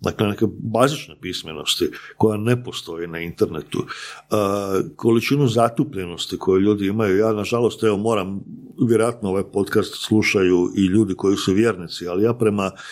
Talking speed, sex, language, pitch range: 145 wpm, male, Croatian, 95-115 Hz